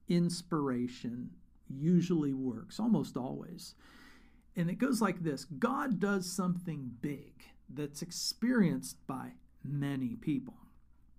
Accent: American